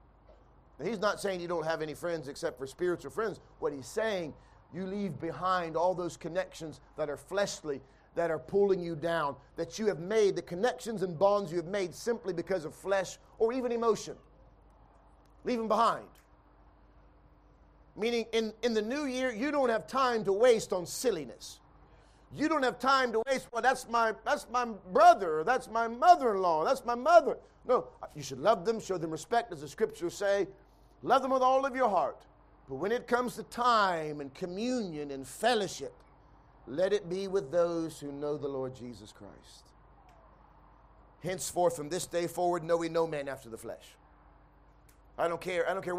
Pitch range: 170-235 Hz